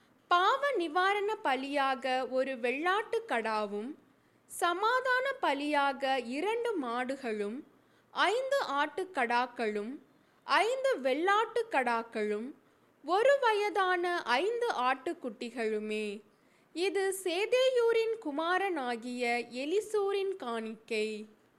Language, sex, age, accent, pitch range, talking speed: Tamil, female, 20-39, native, 245-390 Hz, 60 wpm